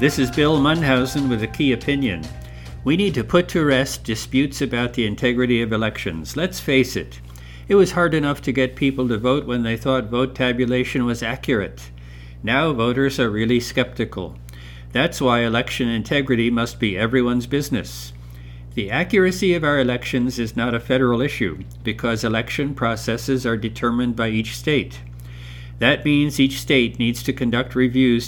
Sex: male